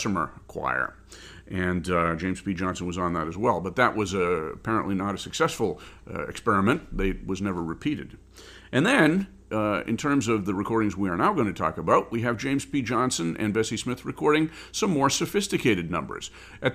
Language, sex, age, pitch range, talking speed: English, male, 50-69, 95-120 Hz, 195 wpm